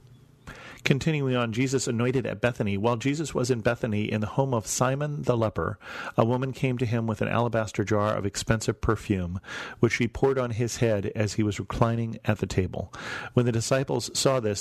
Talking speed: 195 wpm